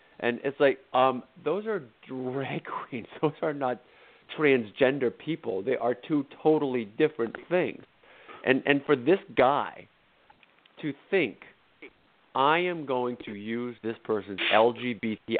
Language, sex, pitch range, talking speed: English, male, 120-160 Hz, 135 wpm